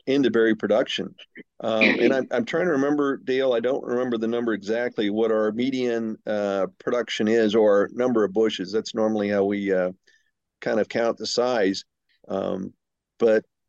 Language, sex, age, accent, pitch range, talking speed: English, male, 50-69, American, 115-130 Hz, 170 wpm